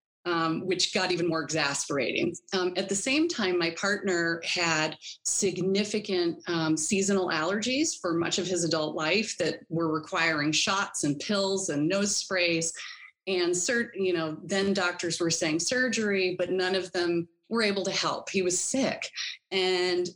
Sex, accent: female, American